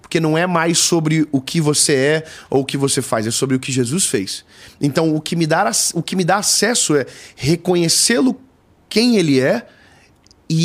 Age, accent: 30-49, Brazilian